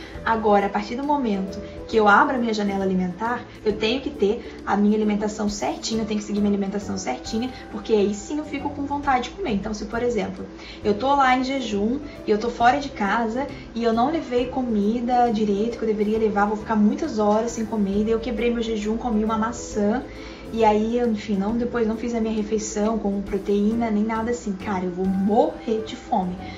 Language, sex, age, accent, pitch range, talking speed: Portuguese, female, 20-39, Brazilian, 210-245 Hz, 215 wpm